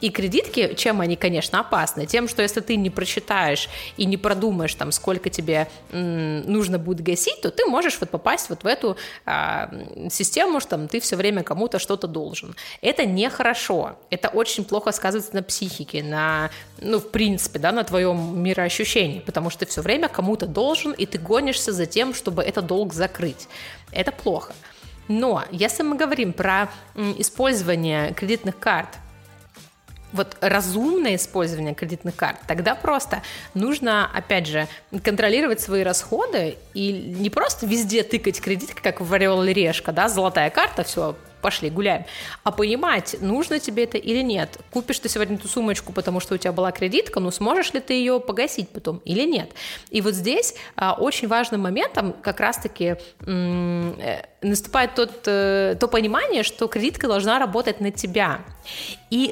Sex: female